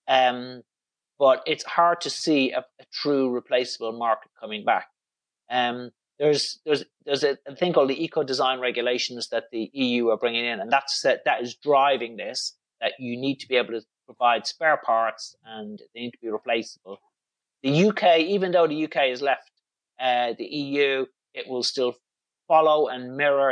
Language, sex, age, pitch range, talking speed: English, male, 30-49, 120-155 Hz, 180 wpm